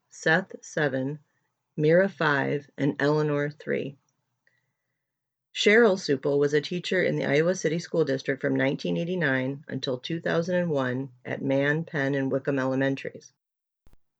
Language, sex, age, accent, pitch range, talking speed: English, female, 30-49, American, 135-155 Hz, 120 wpm